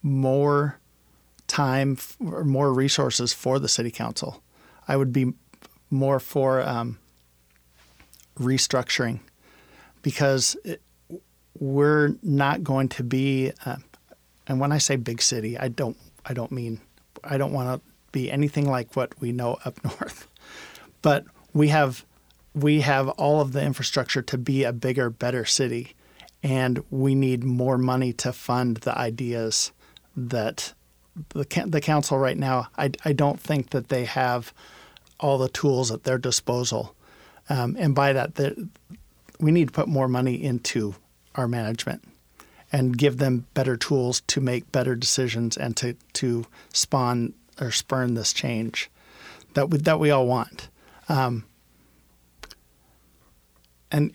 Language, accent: English, American